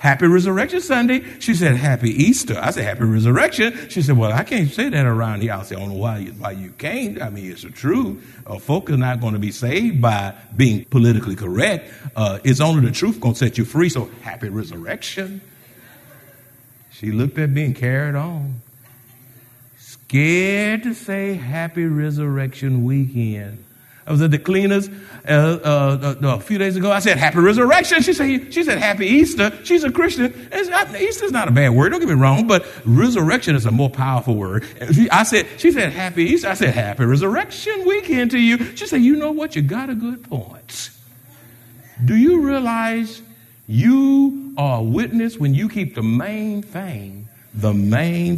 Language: English